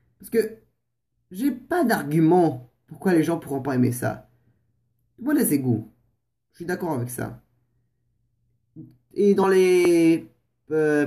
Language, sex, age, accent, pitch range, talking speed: French, male, 20-39, French, 125-195 Hz, 135 wpm